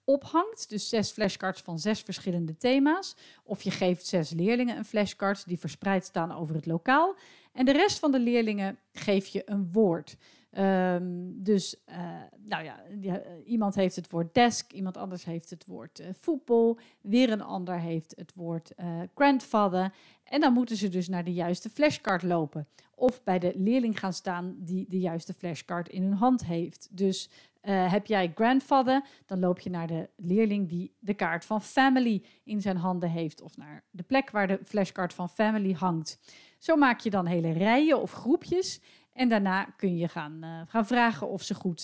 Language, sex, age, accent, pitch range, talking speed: Dutch, female, 40-59, Dutch, 180-225 Hz, 190 wpm